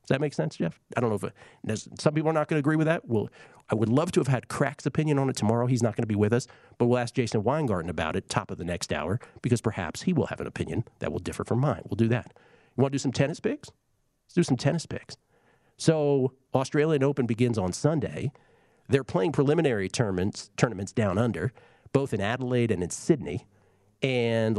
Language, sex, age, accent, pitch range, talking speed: English, male, 50-69, American, 100-130 Hz, 235 wpm